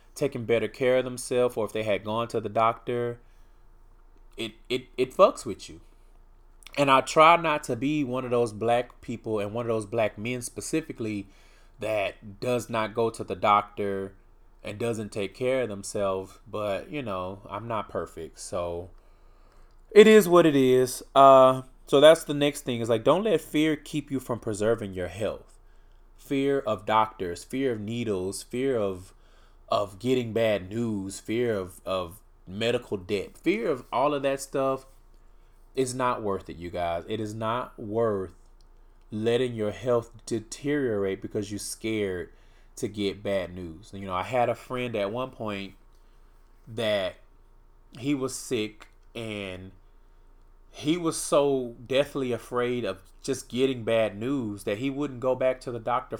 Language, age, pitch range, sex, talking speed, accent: English, 20-39, 100-130 Hz, male, 165 wpm, American